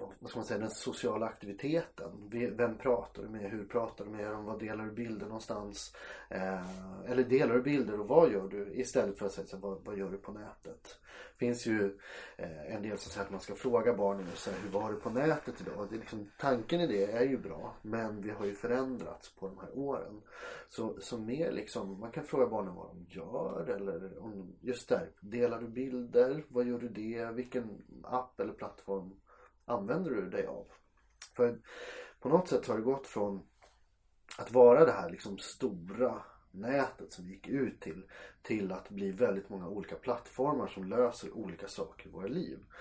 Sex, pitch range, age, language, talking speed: male, 100-120 Hz, 30-49, Swedish, 190 wpm